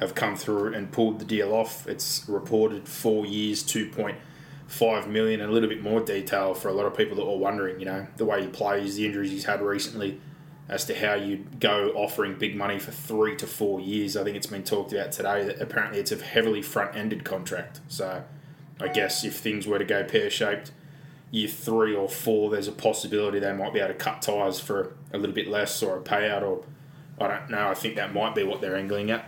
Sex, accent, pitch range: male, Australian, 105-145 Hz